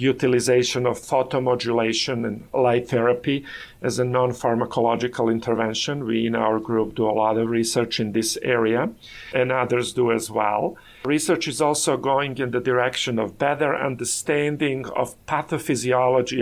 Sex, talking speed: male, 145 wpm